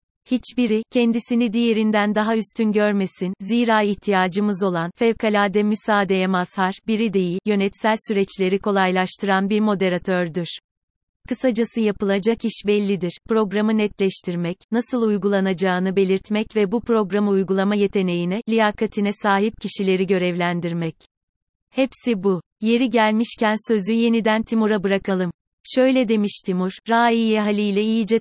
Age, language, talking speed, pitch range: 30-49, Turkish, 110 wpm, 190-225 Hz